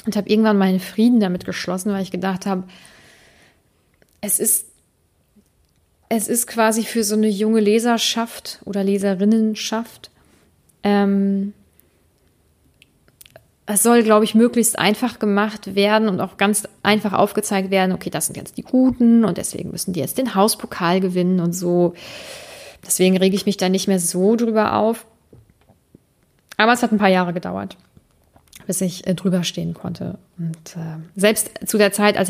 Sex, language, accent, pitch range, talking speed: female, German, German, 185-215 Hz, 155 wpm